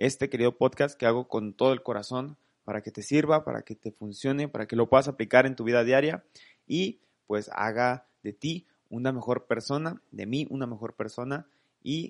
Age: 30-49